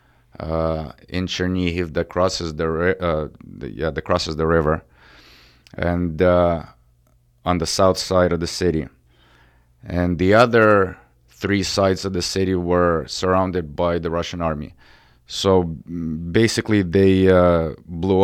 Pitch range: 80-95 Hz